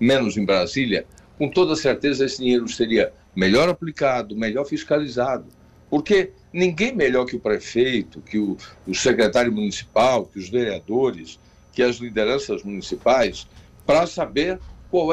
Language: Portuguese